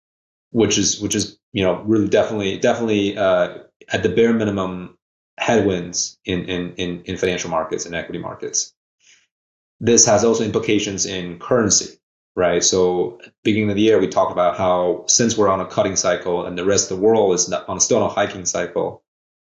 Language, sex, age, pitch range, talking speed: English, male, 30-49, 90-110 Hz, 185 wpm